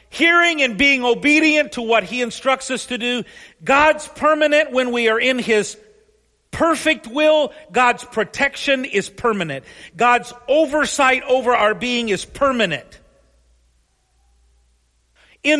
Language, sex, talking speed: English, male, 125 wpm